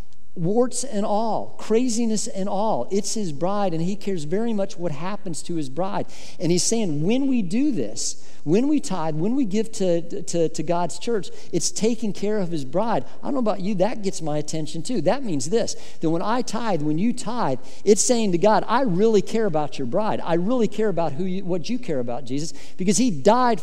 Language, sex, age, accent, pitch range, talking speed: English, male, 50-69, American, 170-225 Hz, 220 wpm